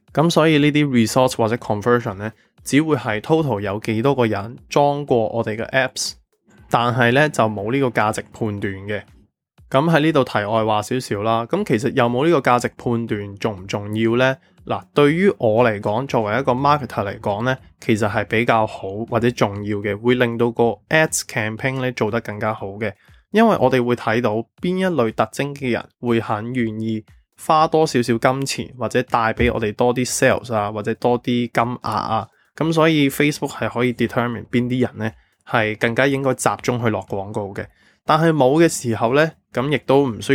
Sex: male